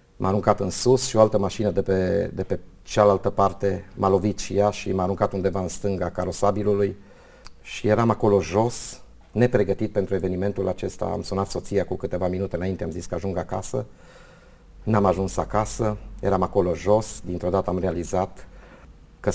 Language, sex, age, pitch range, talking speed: Romanian, male, 30-49, 95-110 Hz, 175 wpm